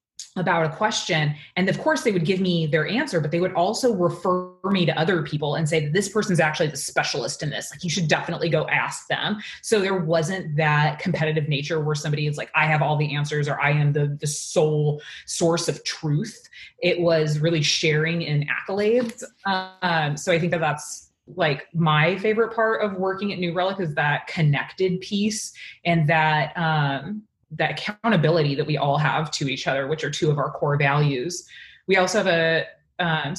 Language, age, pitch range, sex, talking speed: English, 20-39, 150-180 Hz, female, 200 wpm